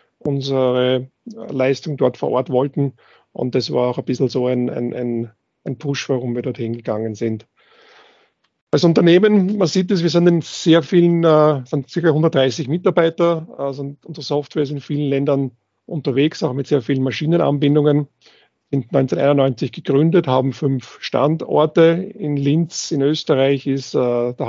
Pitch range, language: 125-160 Hz, German